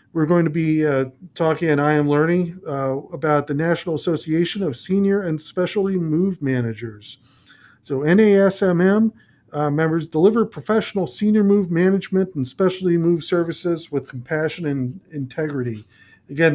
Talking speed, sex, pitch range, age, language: 140 wpm, male, 140-175 Hz, 40-59, English